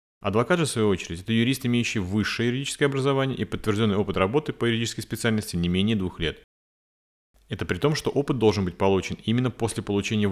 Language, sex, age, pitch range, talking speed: Russian, male, 30-49, 85-120 Hz, 190 wpm